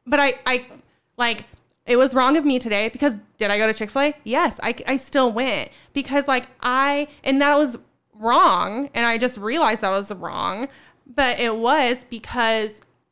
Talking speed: 180 wpm